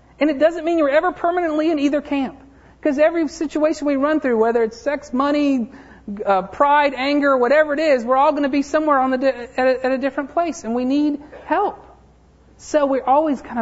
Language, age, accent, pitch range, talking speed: English, 40-59, American, 165-255 Hz, 215 wpm